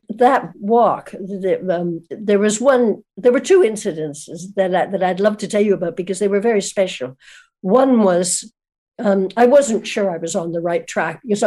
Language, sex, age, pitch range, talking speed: English, female, 60-79, 175-210 Hz, 200 wpm